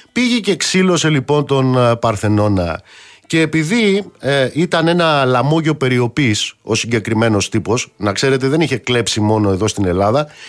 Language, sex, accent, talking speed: Greek, male, native, 145 wpm